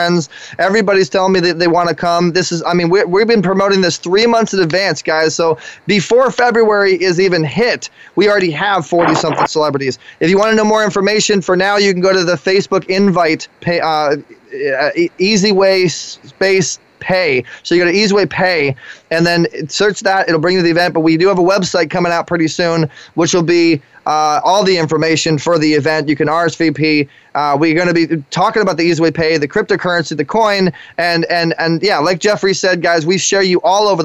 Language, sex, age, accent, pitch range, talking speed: English, male, 20-39, American, 165-200 Hz, 215 wpm